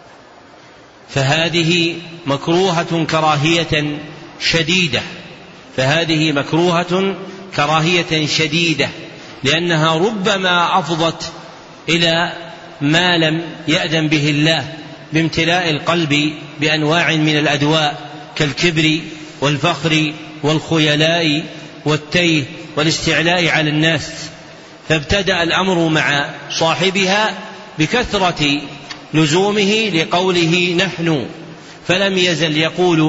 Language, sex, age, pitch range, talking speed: Arabic, male, 40-59, 155-180 Hz, 75 wpm